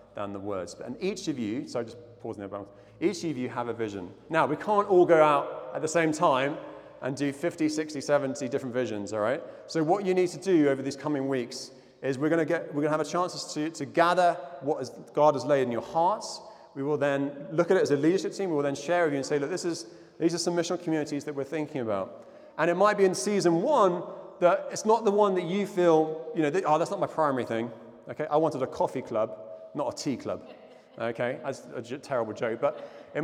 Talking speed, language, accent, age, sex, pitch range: 255 wpm, English, British, 30-49, male, 140-175 Hz